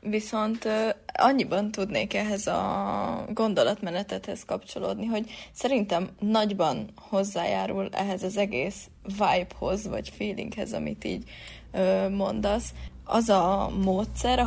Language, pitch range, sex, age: Hungarian, 185-220 Hz, female, 20-39